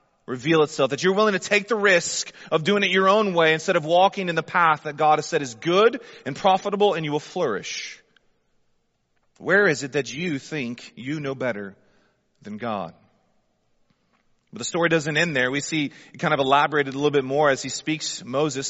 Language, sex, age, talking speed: English, male, 30-49, 205 wpm